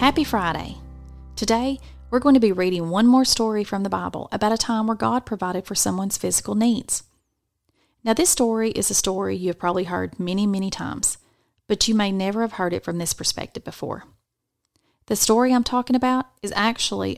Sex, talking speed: female, 190 wpm